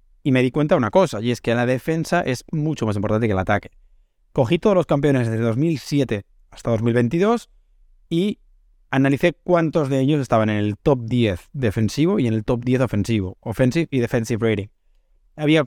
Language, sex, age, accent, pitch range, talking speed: Spanish, male, 20-39, Spanish, 110-145 Hz, 190 wpm